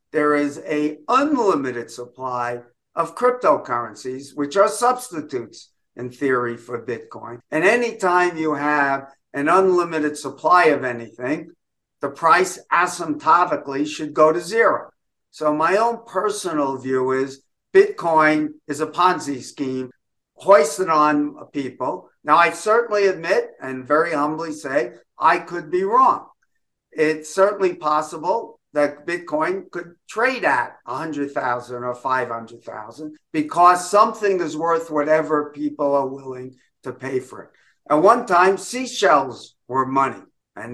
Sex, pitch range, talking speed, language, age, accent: male, 135-180 Hz, 125 wpm, English, 50-69, American